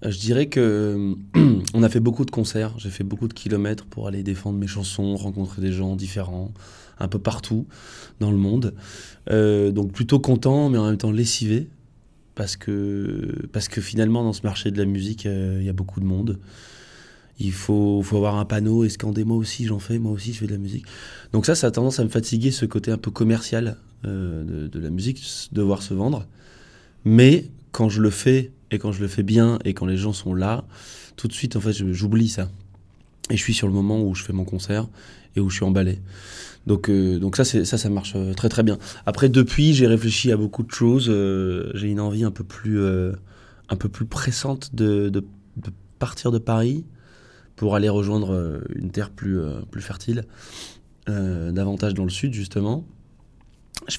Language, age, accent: French, 20-39, French